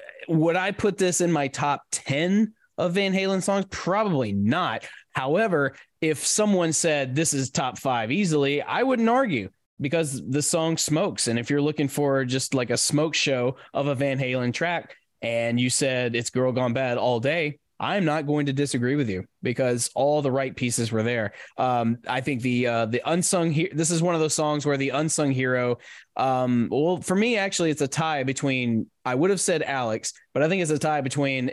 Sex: male